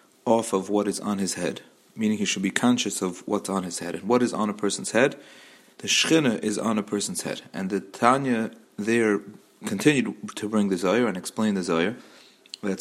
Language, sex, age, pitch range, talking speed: English, male, 40-59, 95-125 Hz, 210 wpm